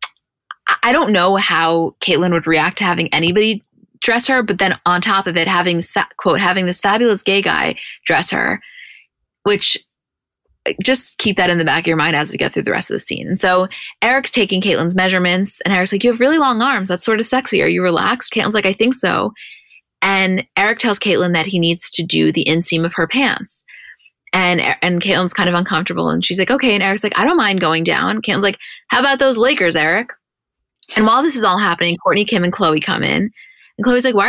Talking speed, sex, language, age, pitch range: 225 wpm, female, English, 20-39, 180-240 Hz